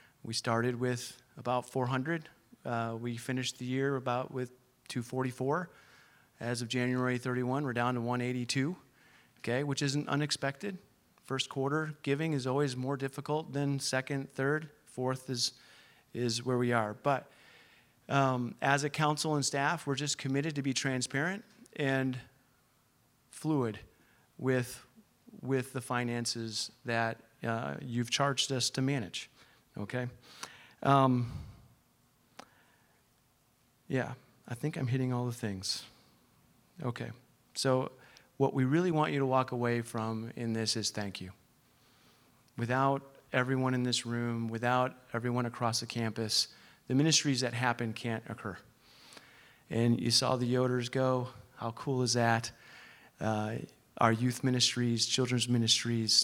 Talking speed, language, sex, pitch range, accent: 135 wpm, English, male, 120-135 Hz, American